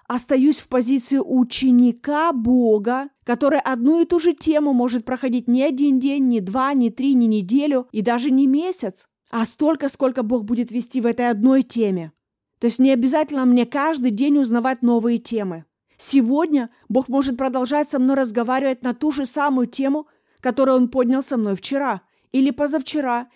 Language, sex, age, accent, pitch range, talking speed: Russian, female, 30-49, native, 240-290 Hz, 170 wpm